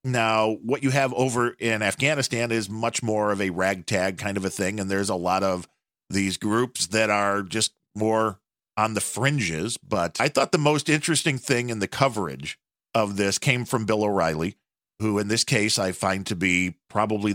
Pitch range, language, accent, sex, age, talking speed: 95-125 Hz, English, American, male, 40-59, 195 wpm